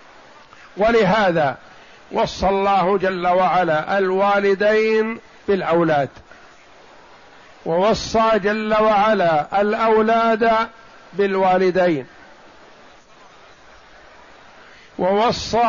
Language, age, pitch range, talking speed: Arabic, 50-69, 175-215 Hz, 50 wpm